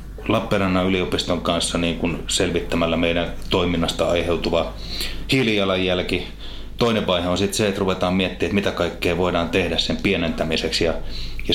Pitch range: 85-105 Hz